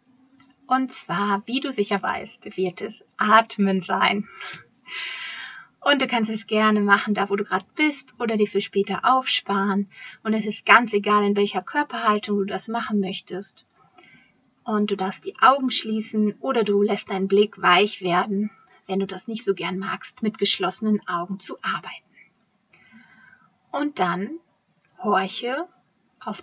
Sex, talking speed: female, 150 wpm